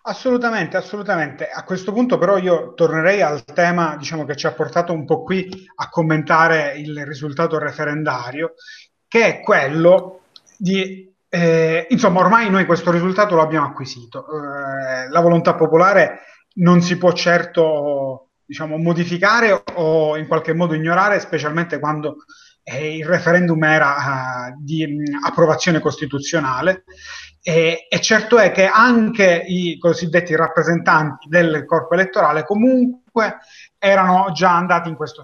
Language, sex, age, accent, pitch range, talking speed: Italian, male, 30-49, native, 155-190 Hz, 135 wpm